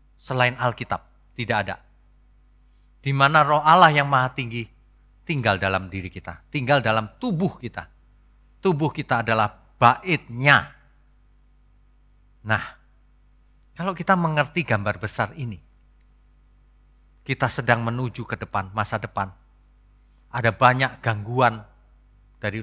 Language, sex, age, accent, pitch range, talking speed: Indonesian, male, 40-59, native, 110-180 Hz, 105 wpm